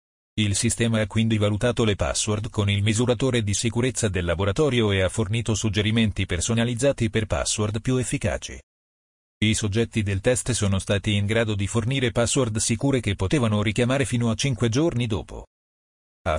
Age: 40-59